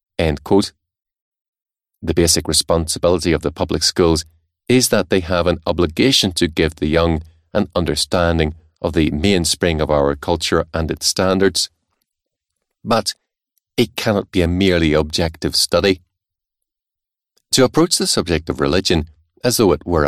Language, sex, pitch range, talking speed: English, male, 80-95 Hz, 140 wpm